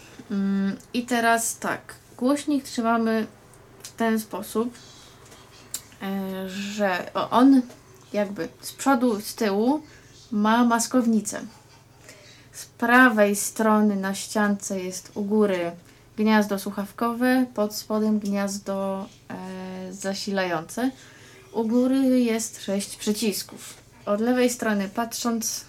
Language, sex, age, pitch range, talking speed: Polish, female, 20-39, 185-225 Hz, 95 wpm